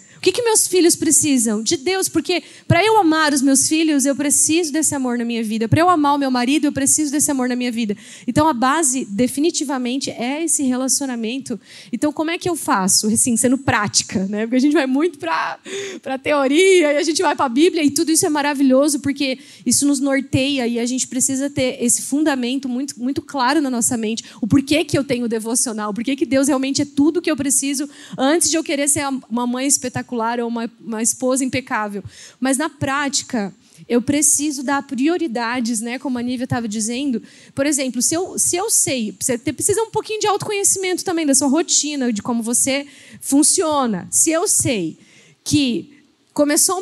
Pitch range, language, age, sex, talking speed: 245-310 Hz, Portuguese, 20-39, female, 200 wpm